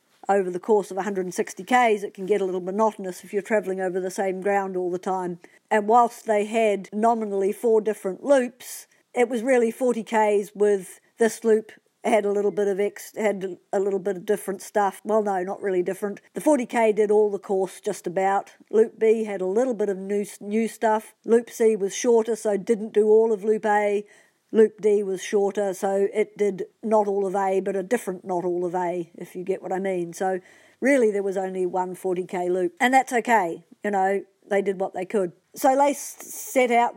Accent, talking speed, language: Australian, 215 wpm, English